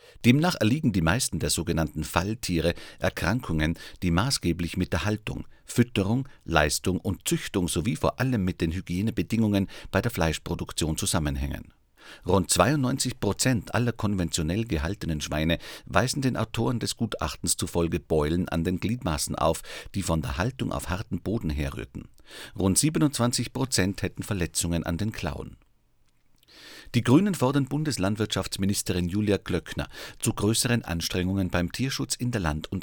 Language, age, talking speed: German, 50-69, 140 wpm